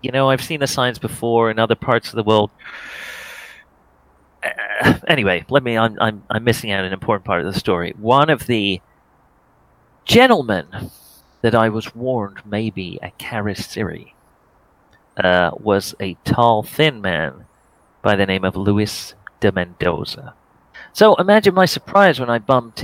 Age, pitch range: 40-59, 100-120 Hz